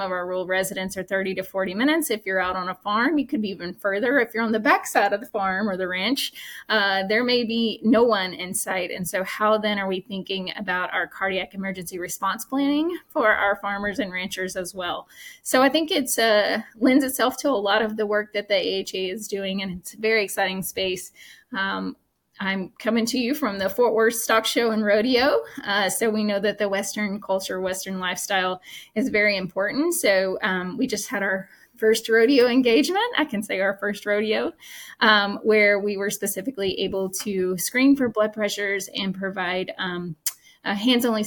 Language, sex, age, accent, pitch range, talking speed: English, female, 20-39, American, 190-230 Hz, 205 wpm